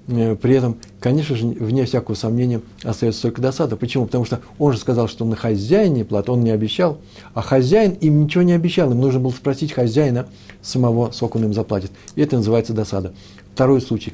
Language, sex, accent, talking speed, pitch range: Russian, male, native, 190 wpm, 110-135 Hz